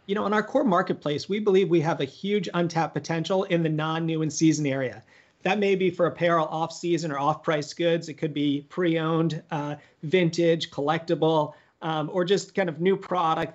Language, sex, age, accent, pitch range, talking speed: English, male, 40-59, American, 160-190 Hz, 190 wpm